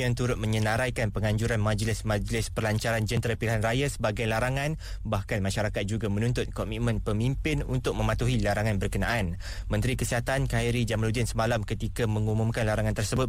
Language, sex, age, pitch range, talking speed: Malay, male, 20-39, 100-120 Hz, 135 wpm